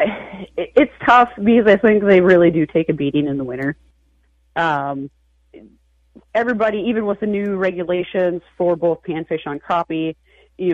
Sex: female